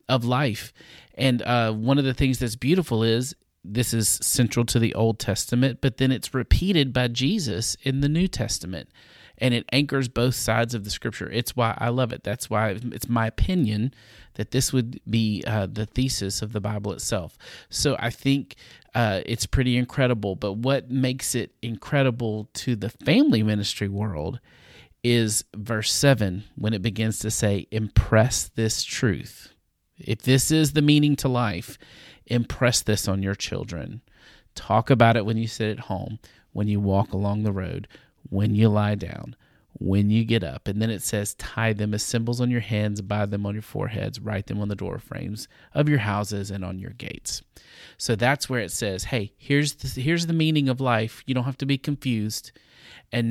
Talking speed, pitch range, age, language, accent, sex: 190 wpm, 105-125 Hz, 40-59, English, American, male